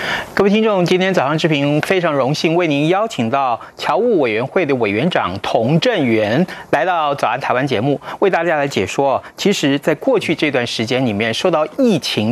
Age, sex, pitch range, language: 30-49, male, 135-195 Hz, Chinese